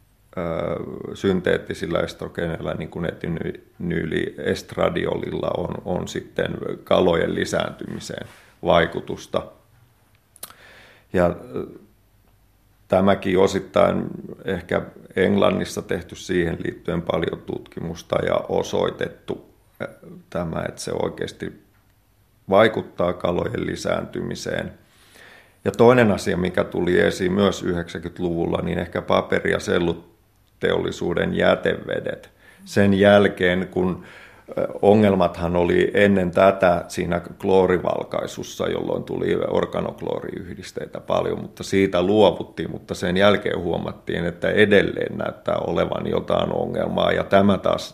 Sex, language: male, Finnish